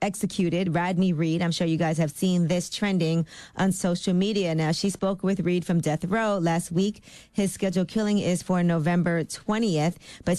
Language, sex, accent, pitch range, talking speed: English, female, American, 160-185 Hz, 185 wpm